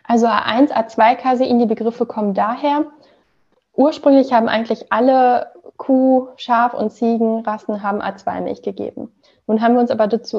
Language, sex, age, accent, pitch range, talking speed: German, female, 10-29, German, 205-245 Hz, 140 wpm